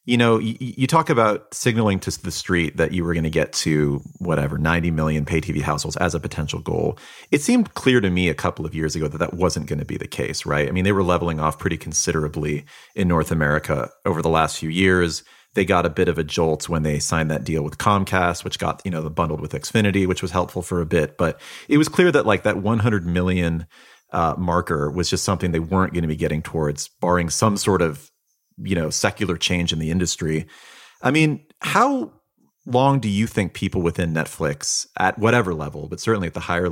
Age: 30-49